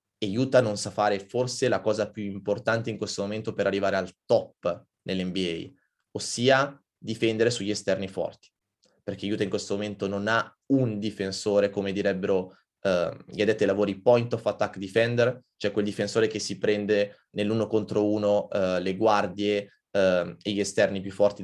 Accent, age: native, 20-39